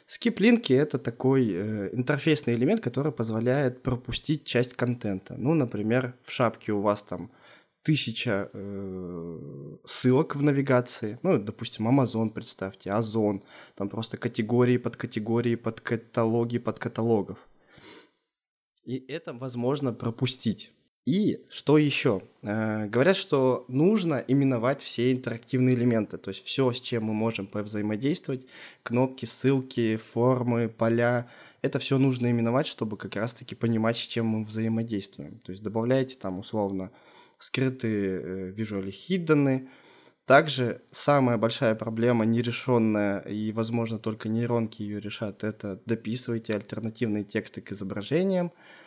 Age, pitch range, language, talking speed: 20-39, 110-130 Hz, Russian, 125 wpm